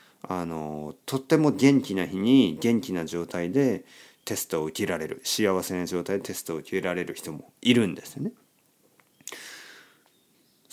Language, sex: Japanese, male